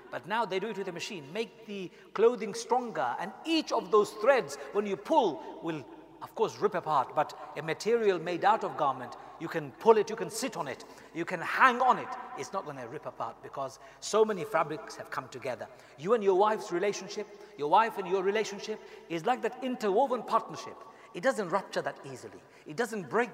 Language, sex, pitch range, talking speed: English, male, 185-255 Hz, 210 wpm